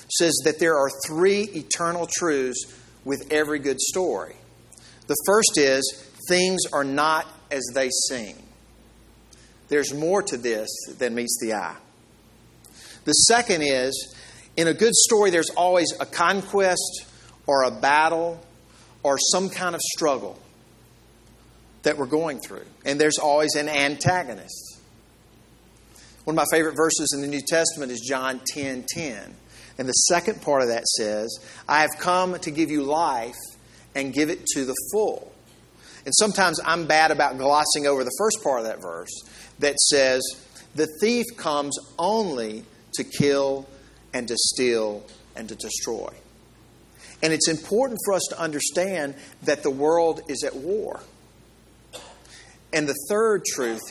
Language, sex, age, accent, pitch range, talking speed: English, male, 50-69, American, 130-170 Hz, 145 wpm